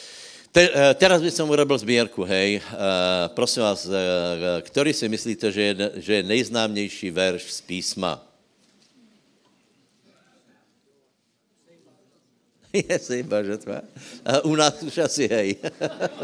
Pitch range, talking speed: 95-120 Hz, 105 wpm